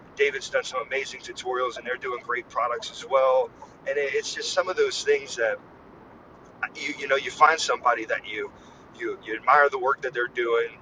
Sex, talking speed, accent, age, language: male, 200 wpm, American, 40-59, English